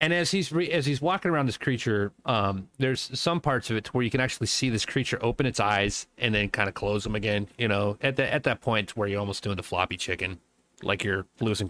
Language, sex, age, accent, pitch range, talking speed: English, male, 30-49, American, 100-140 Hz, 260 wpm